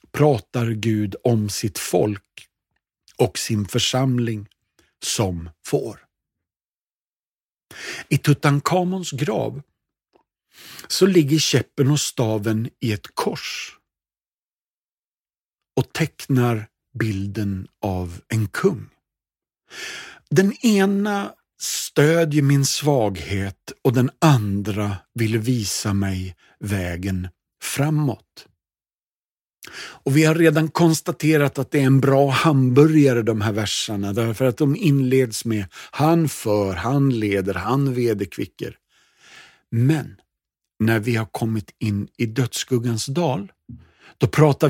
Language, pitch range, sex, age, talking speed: Swedish, 105-140 Hz, male, 50-69, 100 wpm